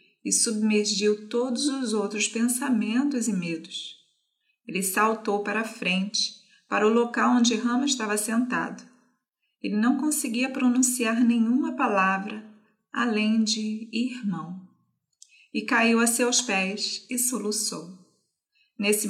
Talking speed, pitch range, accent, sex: 115 wpm, 205-245 Hz, Brazilian, female